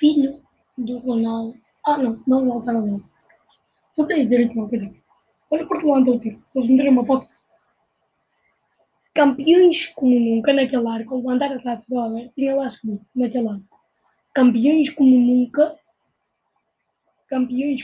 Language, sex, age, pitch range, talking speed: Portuguese, female, 20-39, 235-290 Hz, 155 wpm